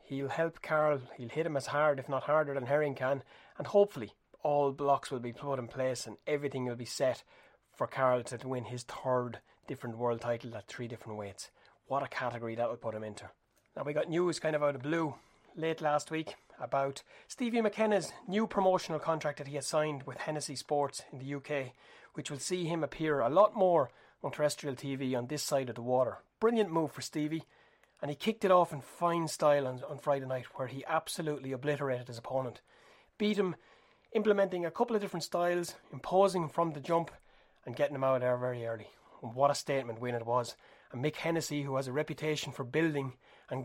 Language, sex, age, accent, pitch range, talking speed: English, male, 30-49, Irish, 125-160 Hz, 210 wpm